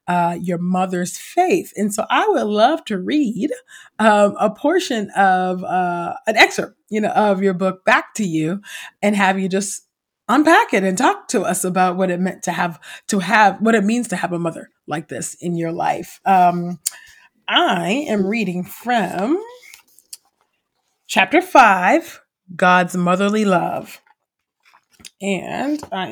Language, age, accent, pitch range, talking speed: English, 30-49, American, 175-220 Hz, 155 wpm